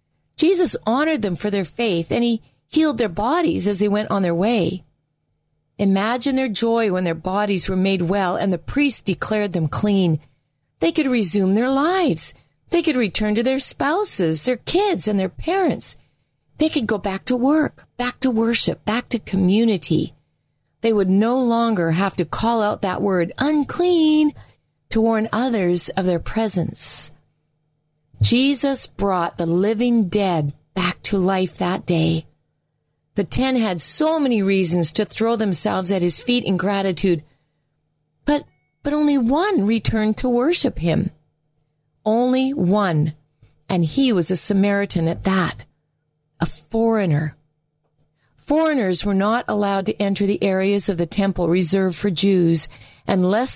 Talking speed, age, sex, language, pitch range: 150 wpm, 40-59, female, English, 170-240 Hz